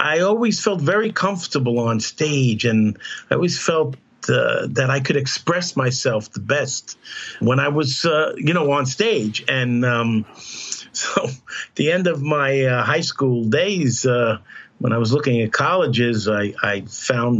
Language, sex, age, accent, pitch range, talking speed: English, male, 50-69, American, 115-140 Hz, 170 wpm